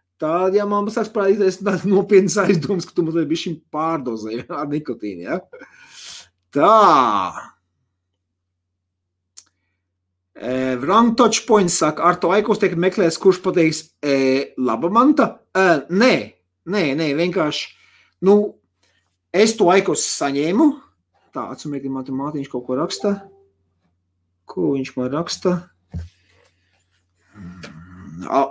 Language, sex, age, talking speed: English, male, 30-49, 90 wpm